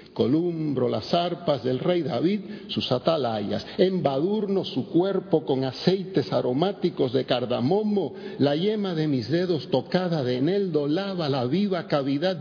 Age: 50-69